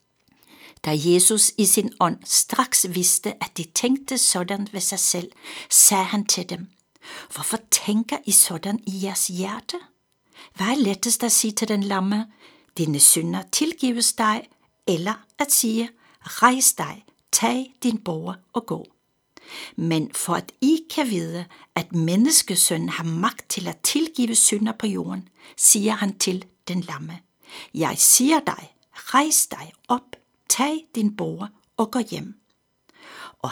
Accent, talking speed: native, 145 wpm